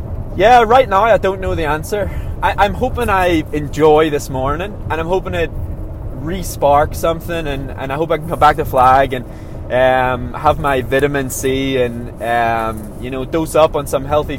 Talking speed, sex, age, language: 190 wpm, male, 20-39, English